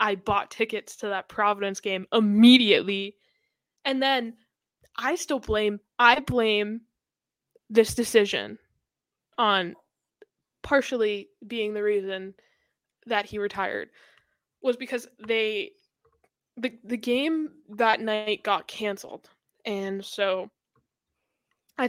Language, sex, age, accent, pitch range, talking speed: English, female, 10-29, American, 205-255 Hz, 105 wpm